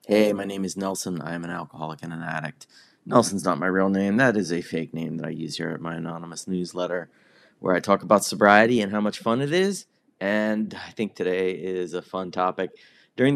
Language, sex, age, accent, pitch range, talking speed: English, male, 30-49, American, 90-105 Hz, 225 wpm